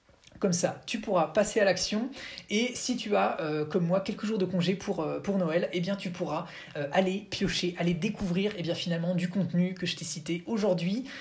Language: French